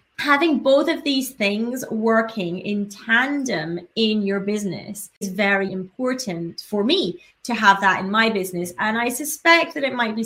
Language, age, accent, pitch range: English, 30-49, British, 195-275 Hz